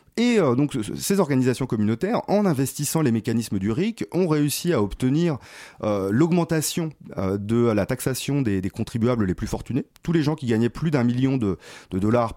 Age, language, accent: 30-49, French, French